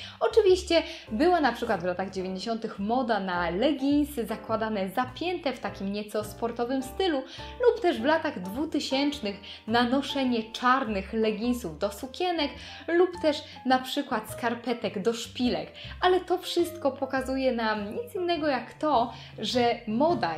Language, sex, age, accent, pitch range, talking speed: Polish, female, 10-29, native, 220-295 Hz, 135 wpm